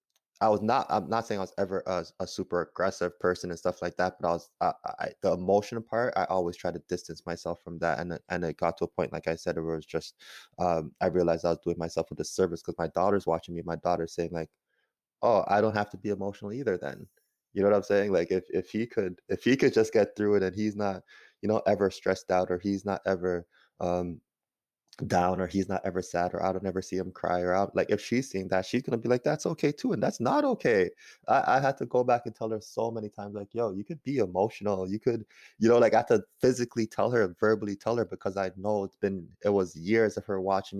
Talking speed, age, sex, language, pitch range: 260 wpm, 20-39, male, English, 90-110 Hz